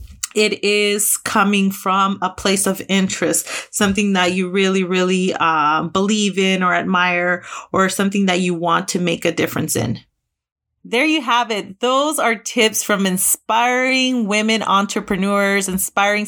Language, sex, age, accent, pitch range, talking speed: English, female, 30-49, American, 190-230 Hz, 145 wpm